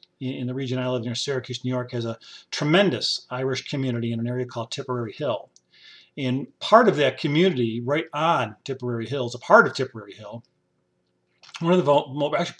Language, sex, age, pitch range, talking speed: English, male, 40-59, 115-135 Hz, 185 wpm